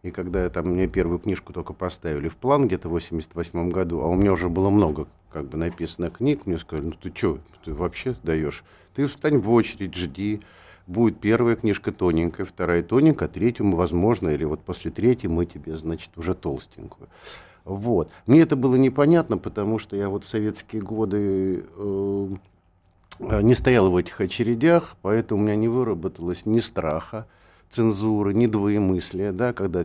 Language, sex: Russian, male